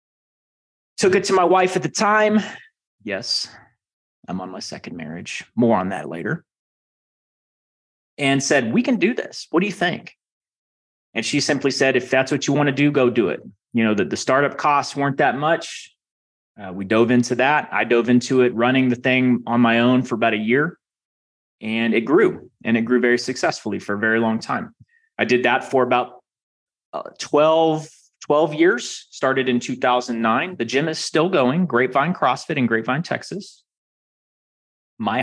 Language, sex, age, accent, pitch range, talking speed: English, male, 30-49, American, 115-160 Hz, 185 wpm